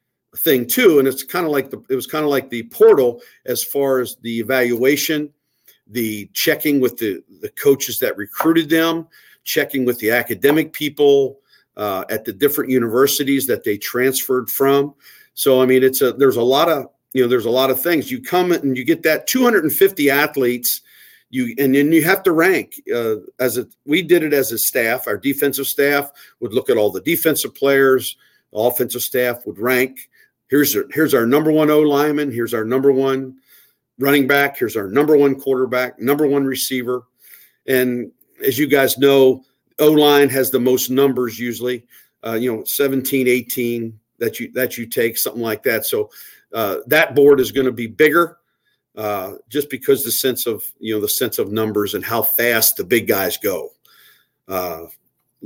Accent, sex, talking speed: American, male, 185 wpm